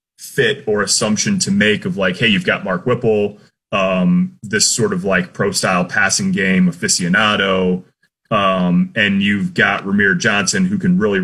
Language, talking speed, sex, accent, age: English, 165 wpm, male, American, 30-49